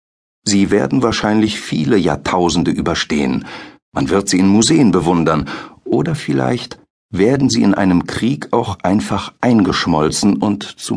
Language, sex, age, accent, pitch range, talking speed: German, male, 60-79, German, 75-105 Hz, 130 wpm